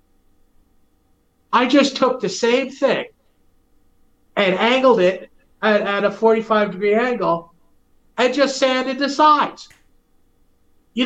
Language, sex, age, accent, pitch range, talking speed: English, male, 40-59, American, 160-230 Hz, 110 wpm